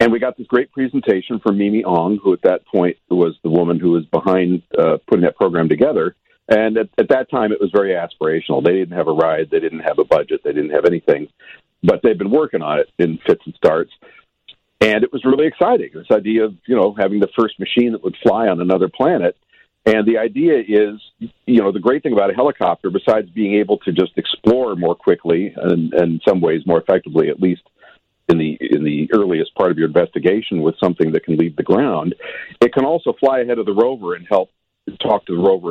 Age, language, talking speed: 50-69, English, 230 wpm